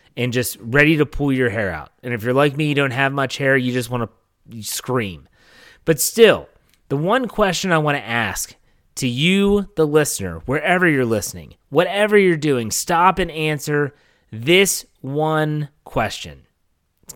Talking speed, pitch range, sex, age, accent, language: 170 wpm, 115-165 Hz, male, 30-49, American, English